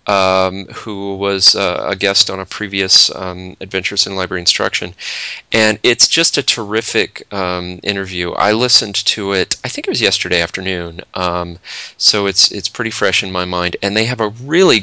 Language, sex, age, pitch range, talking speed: English, male, 30-49, 90-105 Hz, 190 wpm